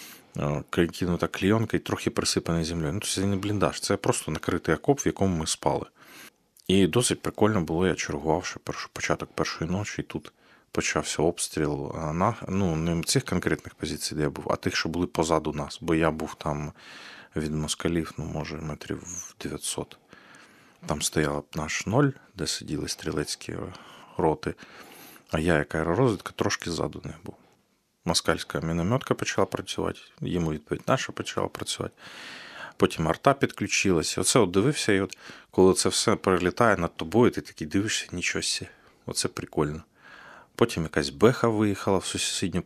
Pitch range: 80-95 Hz